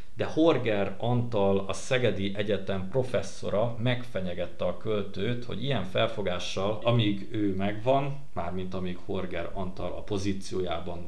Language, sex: Hungarian, male